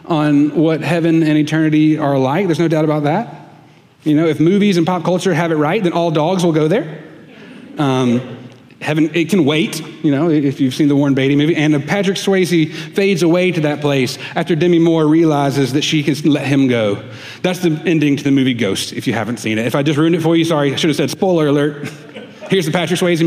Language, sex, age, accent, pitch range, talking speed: English, male, 30-49, American, 140-170 Hz, 235 wpm